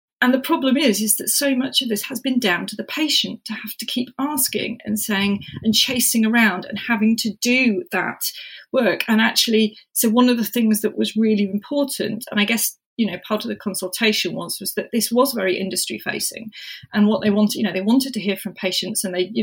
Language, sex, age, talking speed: English, female, 30-49, 230 wpm